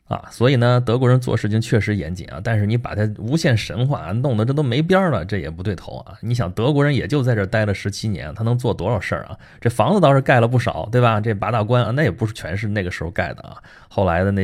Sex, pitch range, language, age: male, 95-125 Hz, Chinese, 20-39